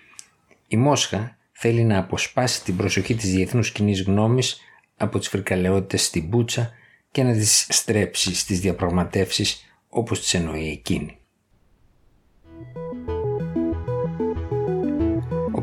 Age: 50-69